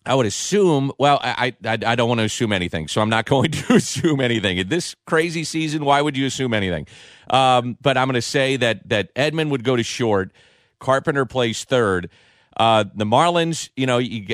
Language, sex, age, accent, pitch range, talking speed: English, male, 40-59, American, 110-135 Hz, 210 wpm